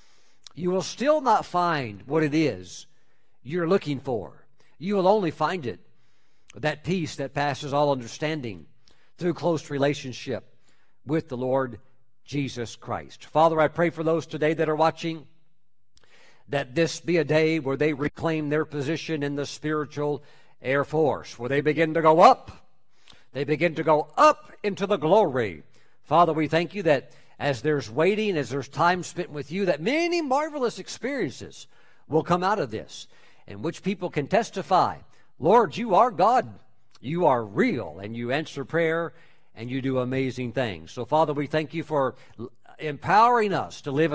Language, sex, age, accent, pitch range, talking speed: English, male, 50-69, American, 135-175 Hz, 165 wpm